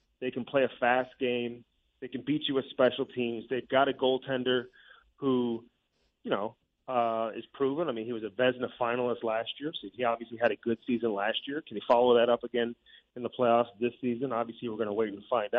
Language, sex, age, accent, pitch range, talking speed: English, male, 30-49, American, 120-140 Hz, 225 wpm